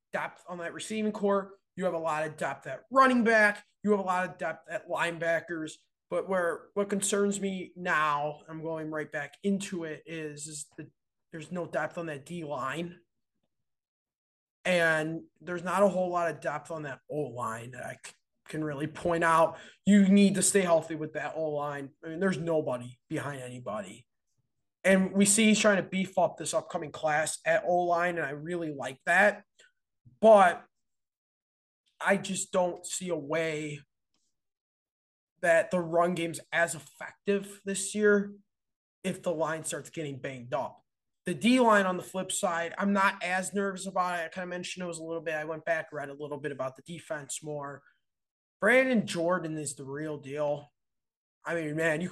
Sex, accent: male, American